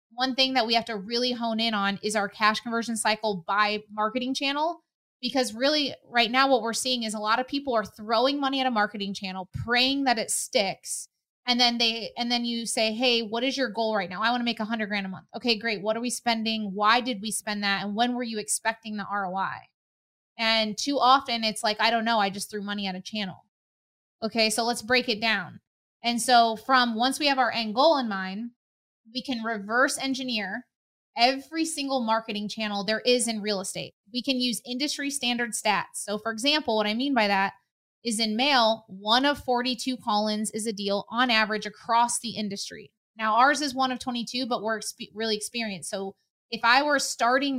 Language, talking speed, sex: English, 215 wpm, female